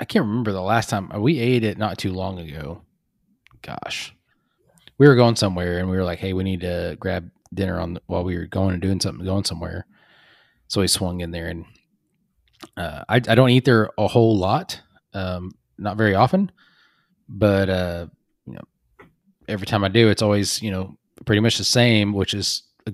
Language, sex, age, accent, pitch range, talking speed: English, male, 20-39, American, 95-110 Hz, 200 wpm